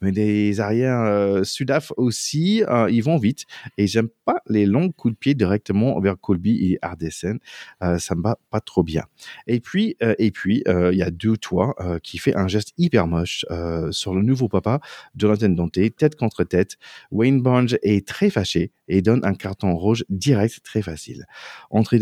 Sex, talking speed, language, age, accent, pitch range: male, 195 wpm, French, 40-59, French, 95-135 Hz